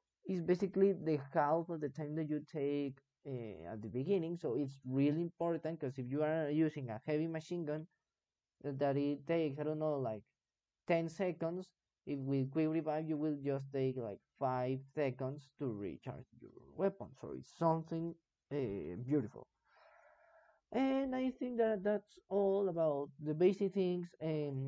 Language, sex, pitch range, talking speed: English, male, 140-190 Hz, 165 wpm